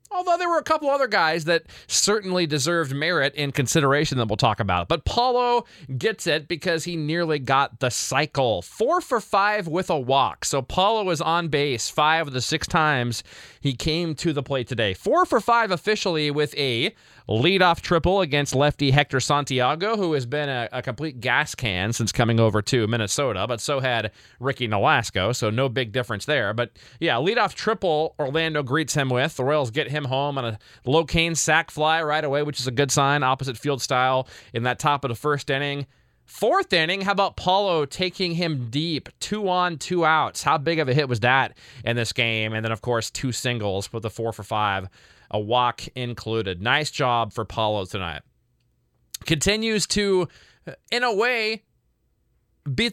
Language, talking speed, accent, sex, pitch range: English, 190 wpm, American, male, 125-170 Hz